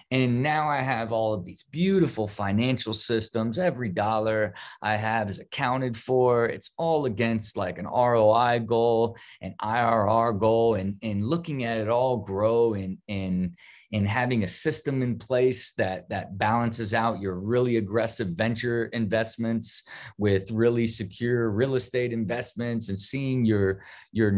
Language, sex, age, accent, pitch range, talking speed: English, male, 30-49, American, 105-125 Hz, 155 wpm